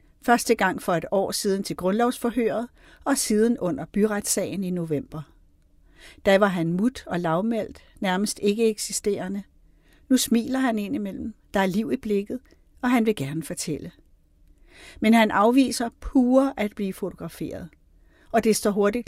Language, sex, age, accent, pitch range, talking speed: Danish, female, 50-69, native, 165-220 Hz, 150 wpm